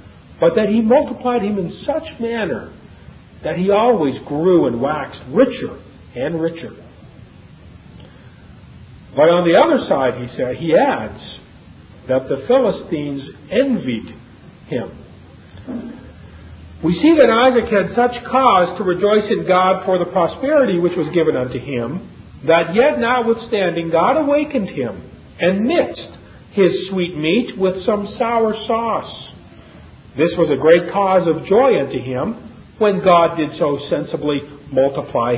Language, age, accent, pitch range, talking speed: English, 50-69, American, 145-215 Hz, 135 wpm